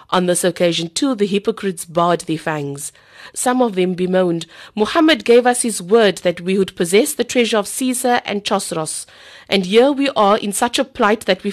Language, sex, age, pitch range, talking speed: English, female, 50-69, 170-220 Hz, 200 wpm